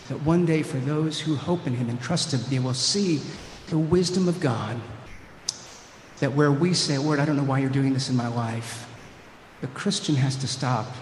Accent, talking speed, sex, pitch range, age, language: American, 210 wpm, male, 125-145 Hz, 50-69, English